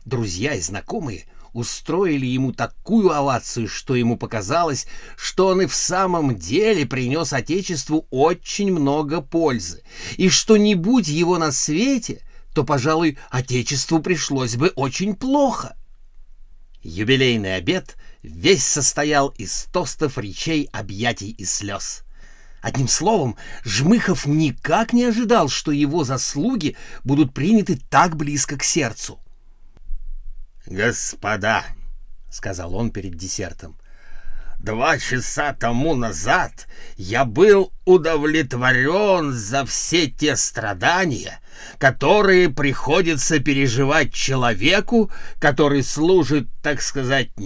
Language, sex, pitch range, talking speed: Russian, male, 115-160 Hz, 105 wpm